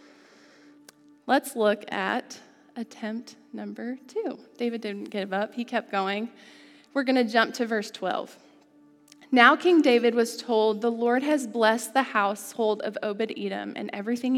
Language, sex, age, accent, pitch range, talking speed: English, female, 20-39, American, 220-290 Hz, 145 wpm